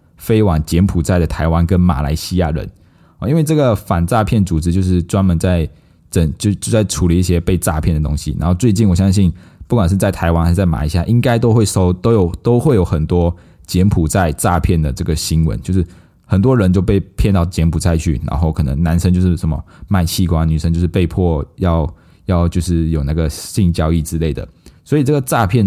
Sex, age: male, 20-39